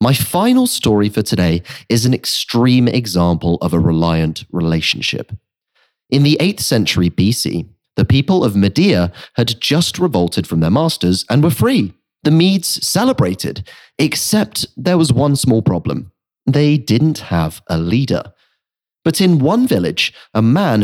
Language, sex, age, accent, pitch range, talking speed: English, male, 30-49, British, 95-150 Hz, 145 wpm